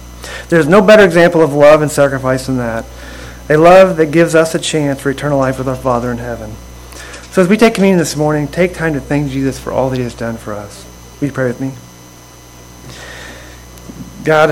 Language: English